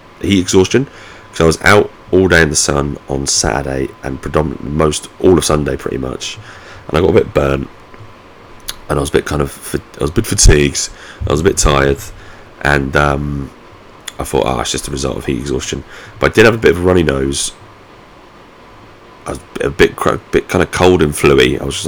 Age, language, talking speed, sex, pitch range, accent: 30-49, English, 225 wpm, male, 70-90 Hz, British